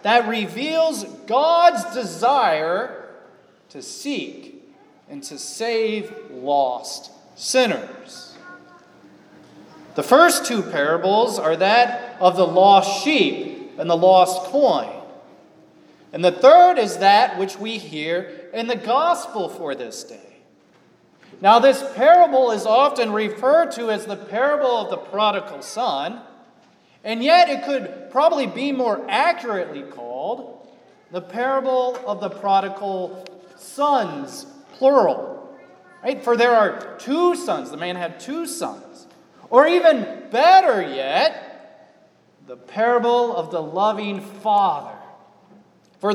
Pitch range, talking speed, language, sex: 200-290 Hz, 120 wpm, English, male